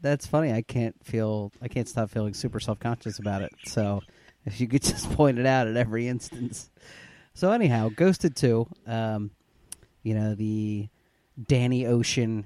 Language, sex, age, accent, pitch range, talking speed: English, male, 30-49, American, 105-120 Hz, 165 wpm